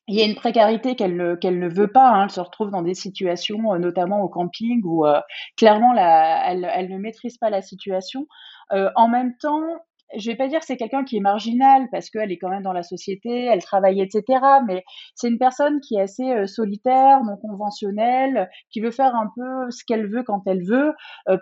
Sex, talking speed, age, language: female, 225 wpm, 30-49, French